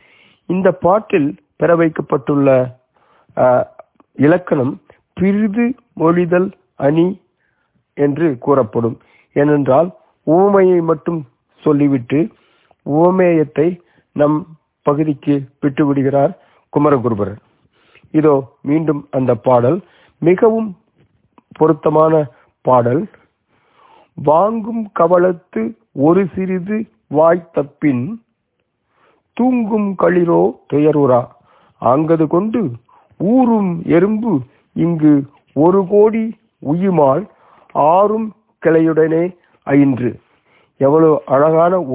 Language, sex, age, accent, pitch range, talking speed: Tamil, male, 50-69, native, 140-180 Hz, 60 wpm